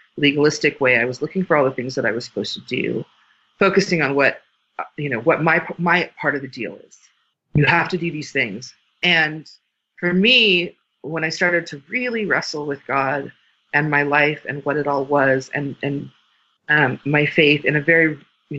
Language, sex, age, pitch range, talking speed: English, female, 40-59, 140-175 Hz, 200 wpm